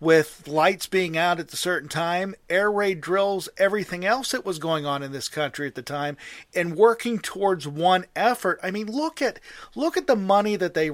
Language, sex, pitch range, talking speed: English, male, 145-185 Hz, 210 wpm